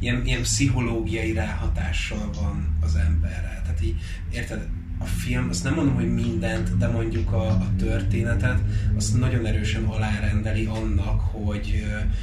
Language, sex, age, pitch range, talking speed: Hungarian, male, 30-49, 90-110 Hz, 130 wpm